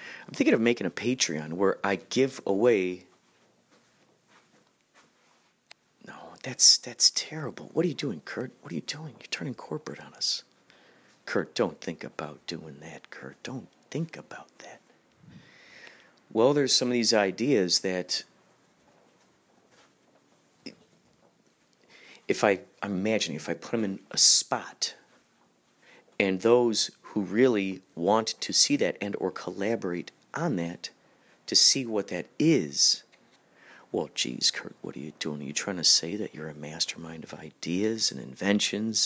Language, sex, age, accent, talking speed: English, male, 40-59, American, 145 wpm